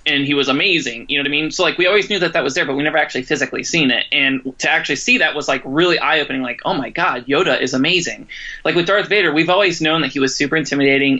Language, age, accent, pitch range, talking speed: English, 20-39, American, 135-175 Hz, 285 wpm